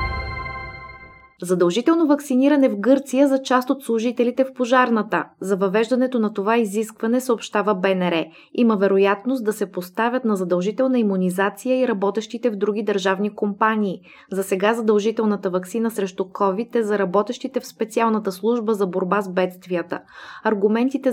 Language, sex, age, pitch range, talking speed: Bulgarian, female, 20-39, 195-240 Hz, 135 wpm